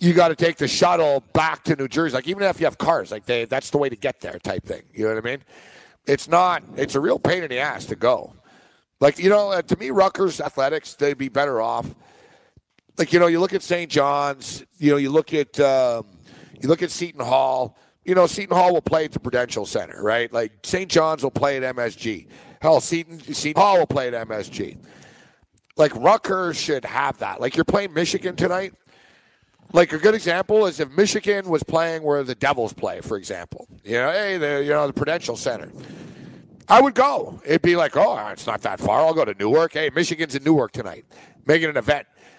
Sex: male